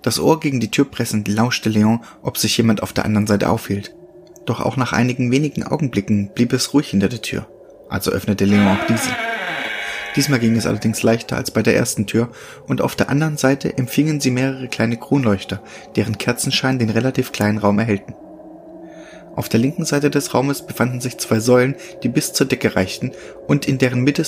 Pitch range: 105-135 Hz